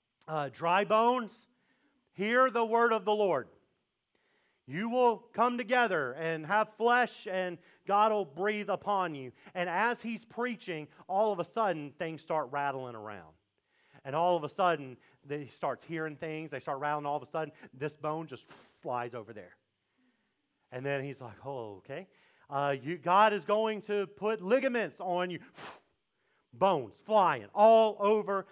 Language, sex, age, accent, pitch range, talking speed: English, male, 40-59, American, 155-225 Hz, 160 wpm